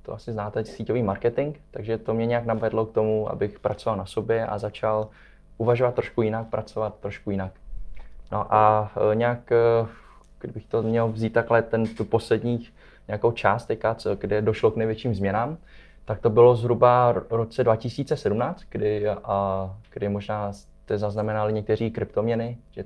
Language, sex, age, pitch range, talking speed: Czech, male, 20-39, 105-120 Hz, 145 wpm